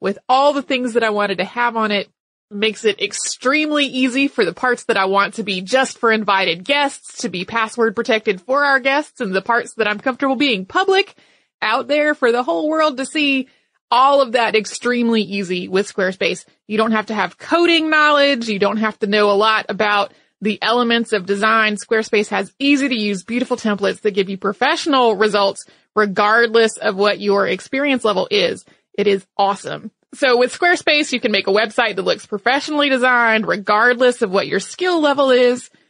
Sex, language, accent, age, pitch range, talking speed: female, English, American, 30-49, 205-275 Hz, 190 wpm